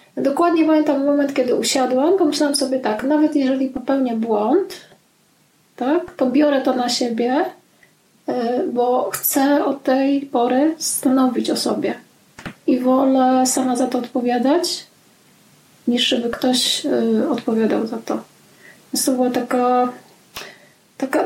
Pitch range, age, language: 255-315 Hz, 30-49, Polish